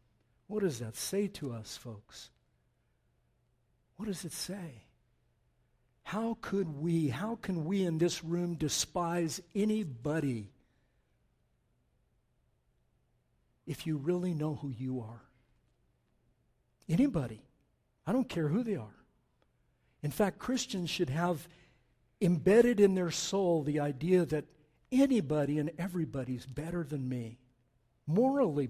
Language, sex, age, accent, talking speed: English, male, 60-79, American, 115 wpm